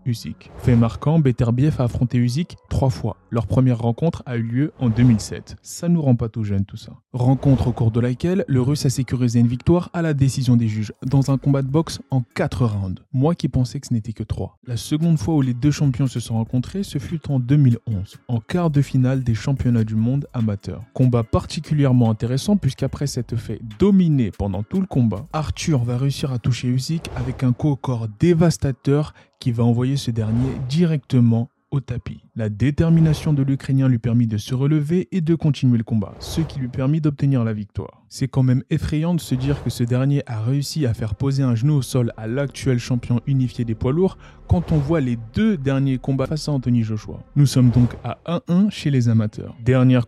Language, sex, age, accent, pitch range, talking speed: French, male, 20-39, French, 120-145 Hz, 215 wpm